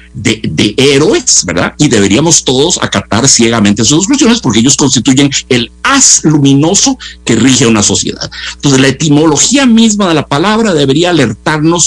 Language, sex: Spanish, male